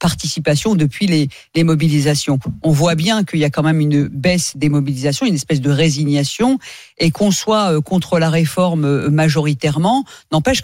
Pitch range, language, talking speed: 160-245 Hz, French, 170 wpm